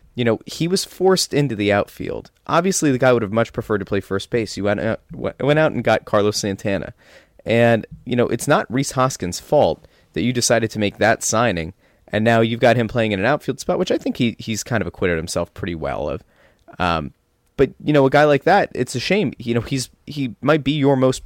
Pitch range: 110-145 Hz